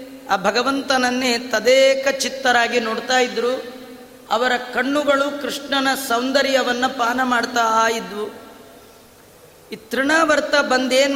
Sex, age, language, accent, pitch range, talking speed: female, 30-49, Kannada, native, 235-270 Hz, 85 wpm